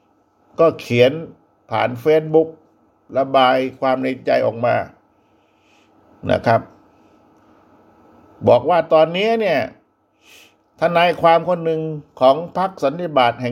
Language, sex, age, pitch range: Thai, male, 60-79, 125-170 Hz